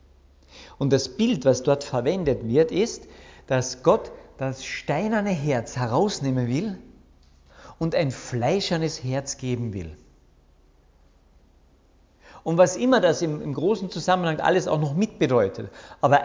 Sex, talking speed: male, 125 wpm